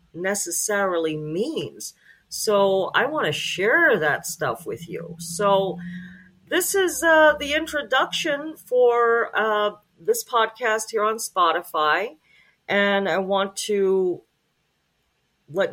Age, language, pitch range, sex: 40-59, English, 165-210 Hz, female